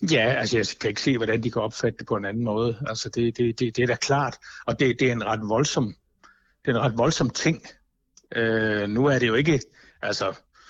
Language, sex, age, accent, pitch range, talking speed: Danish, male, 60-79, native, 115-140 Hz, 240 wpm